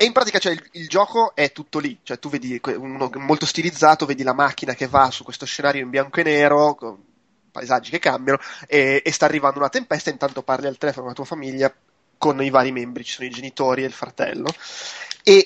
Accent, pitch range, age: native, 130-165 Hz, 20-39